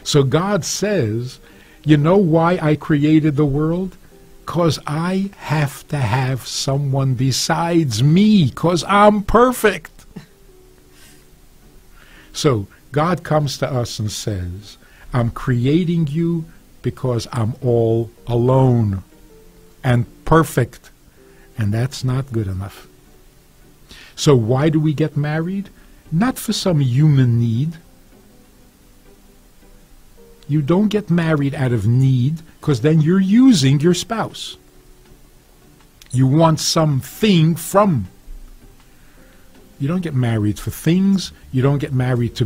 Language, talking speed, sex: English, 115 wpm, male